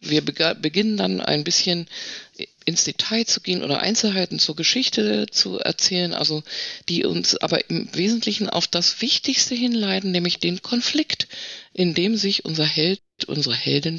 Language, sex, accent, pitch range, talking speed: German, female, German, 140-195 Hz, 150 wpm